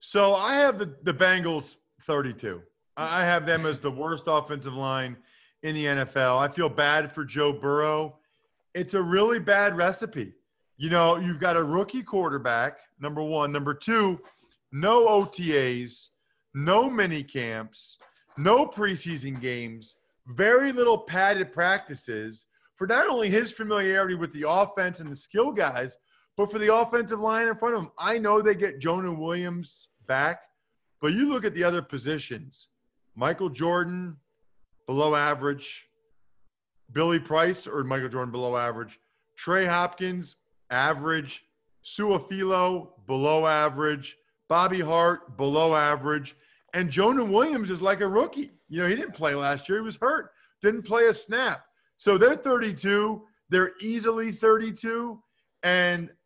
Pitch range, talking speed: 150-210 Hz, 145 wpm